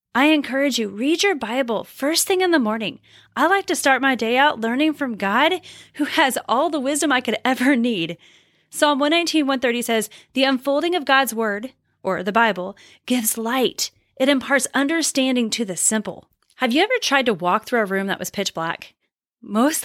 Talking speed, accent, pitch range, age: 190 wpm, American, 235-310 Hz, 10-29